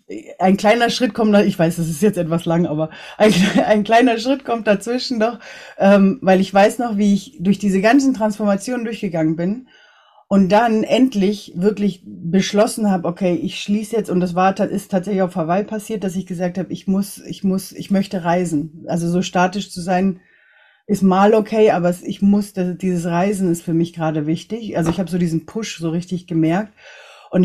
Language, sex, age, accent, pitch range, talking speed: German, female, 30-49, German, 175-210 Hz, 195 wpm